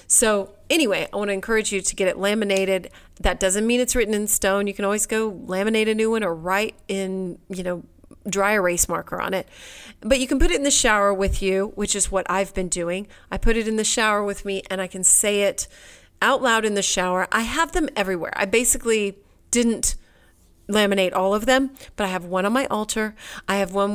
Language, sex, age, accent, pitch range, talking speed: English, female, 30-49, American, 180-220 Hz, 230 wpm